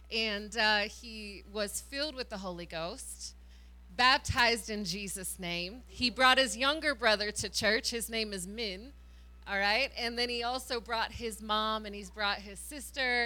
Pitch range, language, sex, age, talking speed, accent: 185-225 Hz, English, female, 20-39, 170 wpm, American